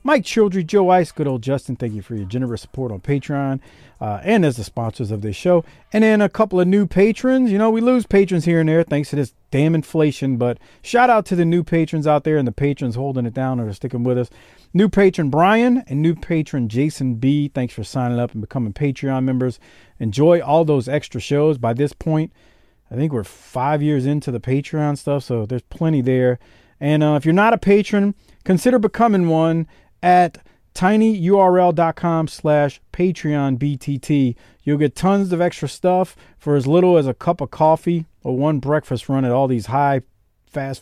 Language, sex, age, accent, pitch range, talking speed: English, male, 40-59, American, 125-165 Hz, 195 wpm